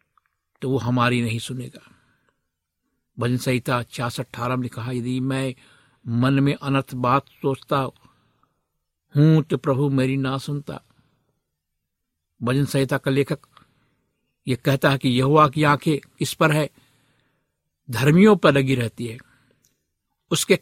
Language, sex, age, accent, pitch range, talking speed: Hindi, male, 60-79, native, 125-160 Hz, 120 wpm